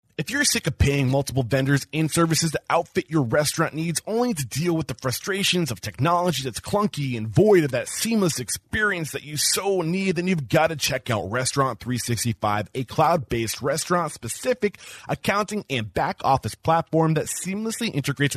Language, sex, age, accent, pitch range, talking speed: English, male, 30-49, American, 130-185 Hz, 175 wpm